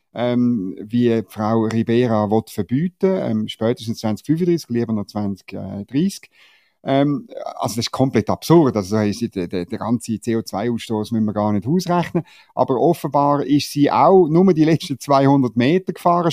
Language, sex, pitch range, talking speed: German, male, 110-145 Hz, 145 wpm